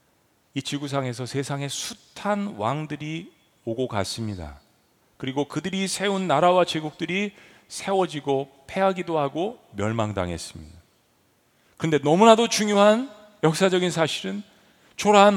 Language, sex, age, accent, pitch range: Korean, male, 40-59, native, 145-205 Hz